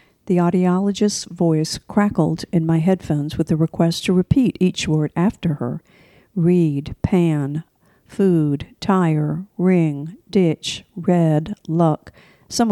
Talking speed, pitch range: 120 wpm, 160-190 Hz